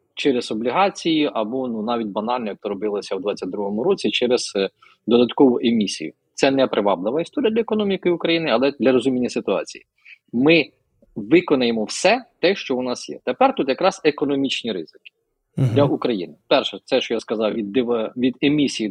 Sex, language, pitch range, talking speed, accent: male, Ukrainian, 120-180 Hz, 160 wpm, native